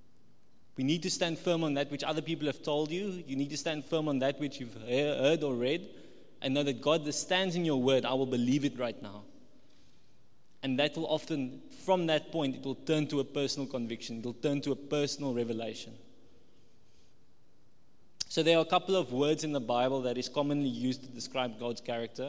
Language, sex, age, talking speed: English, male, 20-39, 205 wpm